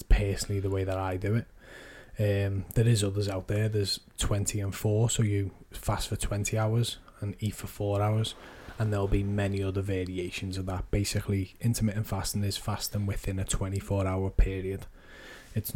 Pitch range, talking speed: 95-105 Hz, 180 wpm